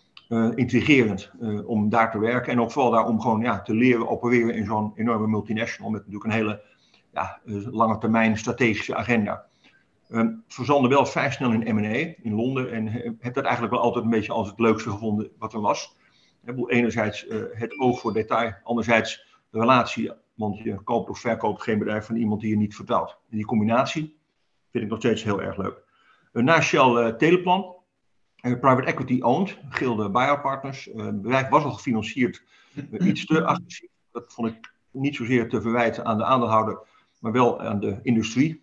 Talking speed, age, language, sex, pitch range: 190 wpm, 50-69, Dutch, male, 110-125 Hz